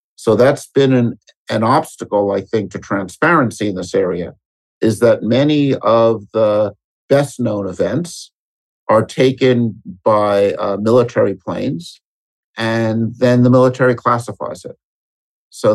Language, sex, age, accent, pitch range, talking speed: English, male, 50-69, American, 100-125 Hz, 130 wpm